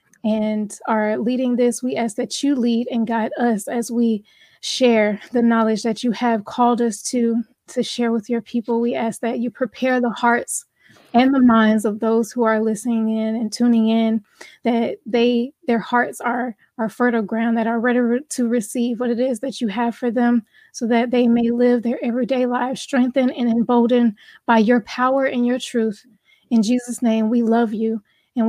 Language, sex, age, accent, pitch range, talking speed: English, female, 20-39, American, 225-245 Hz, 195 wpm